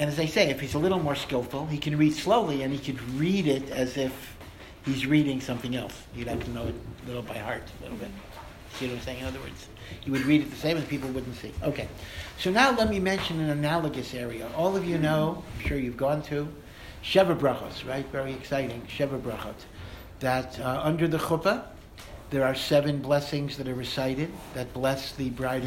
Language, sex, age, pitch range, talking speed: English, male, 60-79, 125-155 Hz, 225 wpm